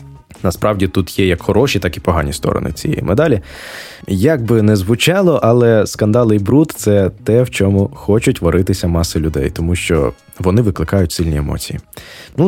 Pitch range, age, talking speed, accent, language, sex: 90-115 Hz, 20-39, 165 wpm, native, Ukrainian, male